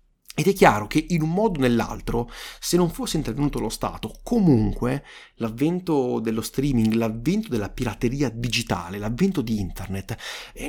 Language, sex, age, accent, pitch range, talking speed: Italian, male, 30-49, native, 110-175 Hz, 150 wpm